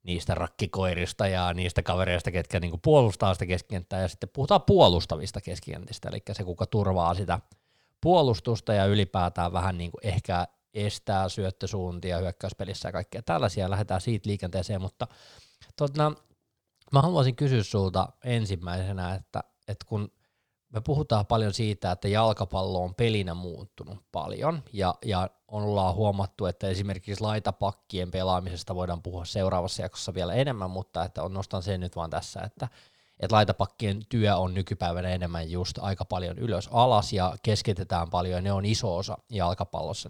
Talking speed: 145 wpm